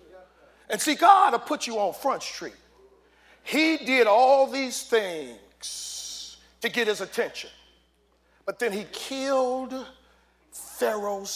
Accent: American